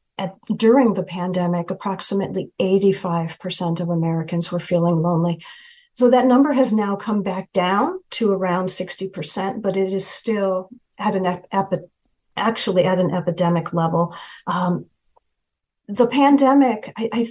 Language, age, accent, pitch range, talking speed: English, 50-69, American, 180-235 Hz, 140 wpm